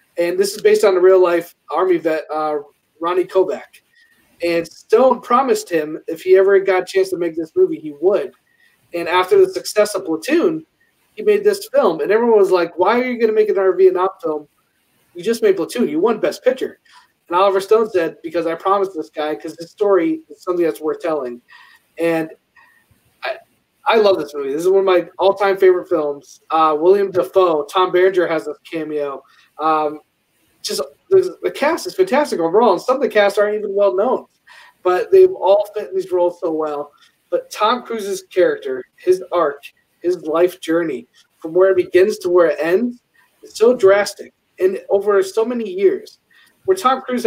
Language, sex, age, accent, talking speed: English, male, 30-49, American, 195 wpm